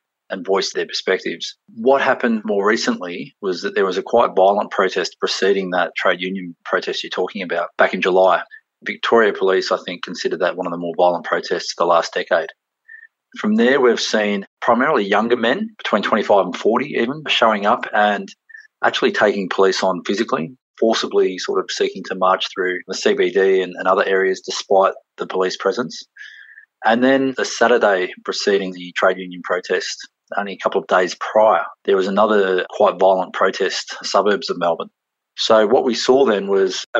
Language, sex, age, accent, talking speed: English, male, 30-49, Australian, 180 wpm